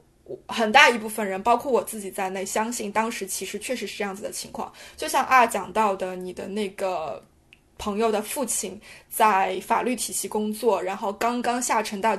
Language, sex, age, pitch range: Chinese, female, 20-39, 205-265 Hz